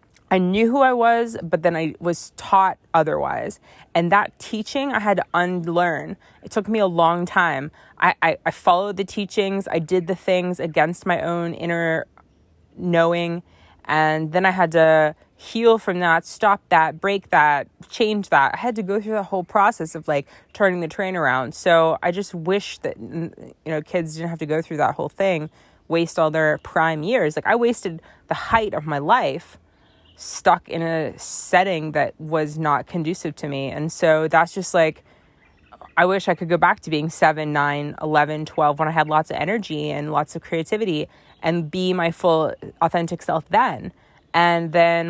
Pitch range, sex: 155-190 Hz, female